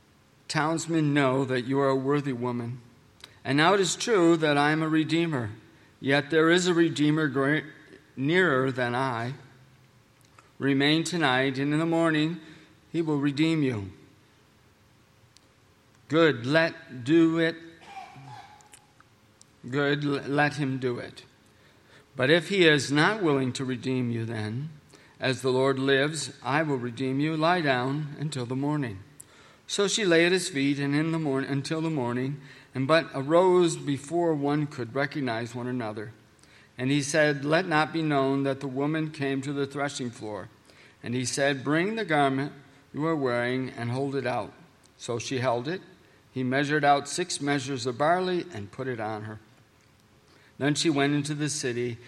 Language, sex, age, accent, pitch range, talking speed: English, male, 50-69, American, 125-155 Hz, 160 wpm